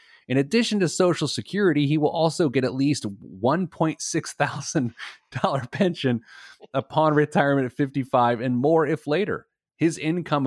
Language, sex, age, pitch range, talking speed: English, male, 30-49, 115-160 Hz, 130 wpm